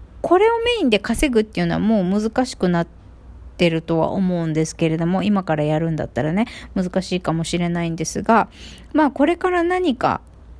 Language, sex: Japanese, female